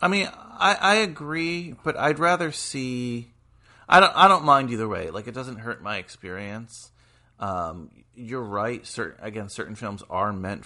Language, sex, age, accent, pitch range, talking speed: English, male, 30-49, American, 95-120 Hz, 175 wpm